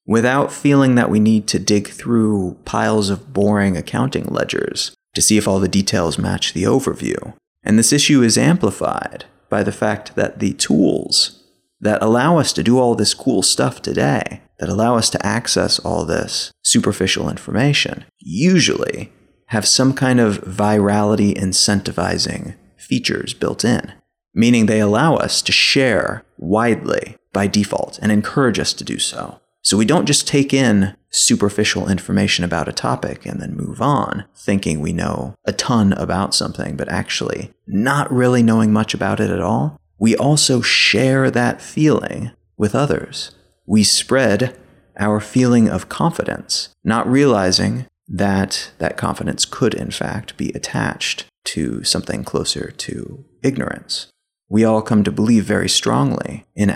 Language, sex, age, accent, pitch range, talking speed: English, male, 30-49, American, 100-120 Hz, 150 wpm